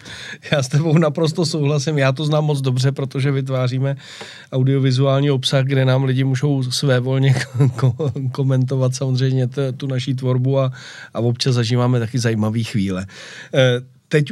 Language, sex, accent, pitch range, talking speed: Czech, male, native, 125-140 Hz, 145 wpm